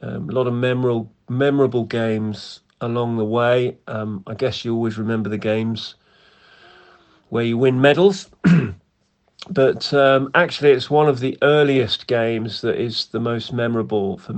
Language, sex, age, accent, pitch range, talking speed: English, male, 40-59, British, 110-130 Hz, 155 wpm